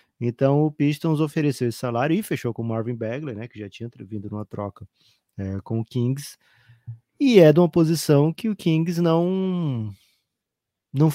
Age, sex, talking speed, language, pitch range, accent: 20-39, male, 180 wpm, Portuguese, 110-135 Hz, Brazilian